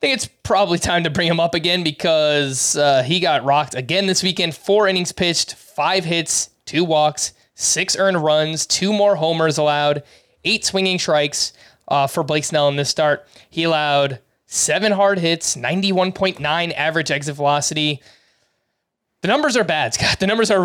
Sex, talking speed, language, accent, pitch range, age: male, 170 wpm, English, American, 145-175 Hz, 20-39